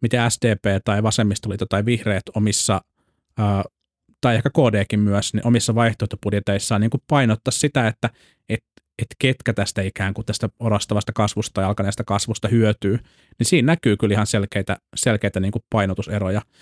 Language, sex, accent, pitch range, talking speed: Finnish, male, native, 100-120 Hz, 150 wpm